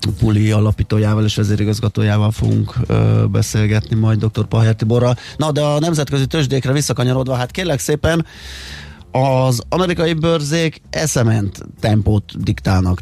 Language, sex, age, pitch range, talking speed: Hungarian, male, 30-49, 105-120 Hz, 120 wpm